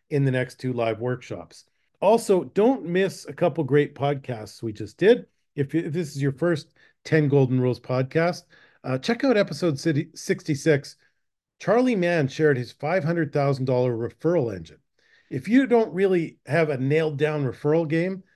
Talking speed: 170 wpm